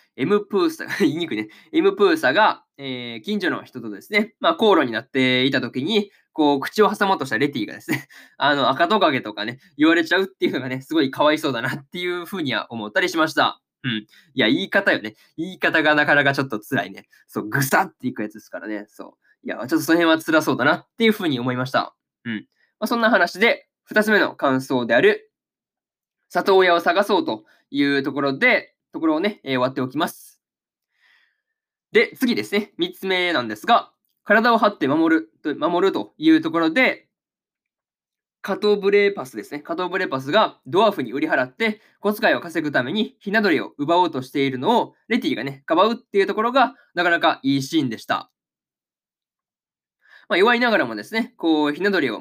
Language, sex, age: Japanese, male, 20-39